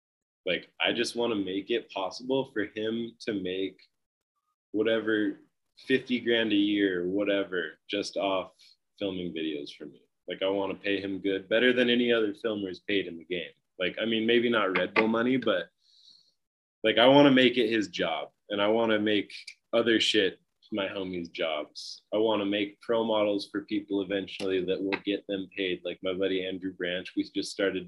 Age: 20-39